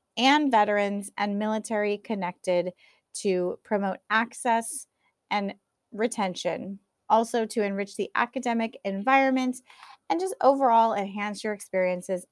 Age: 30-49